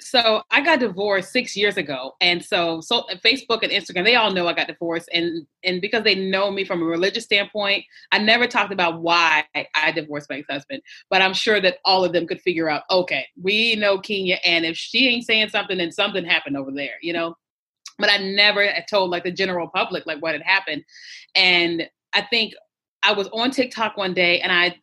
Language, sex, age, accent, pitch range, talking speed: English, female, 30-49, American, 180-220 Hz, 215 wpm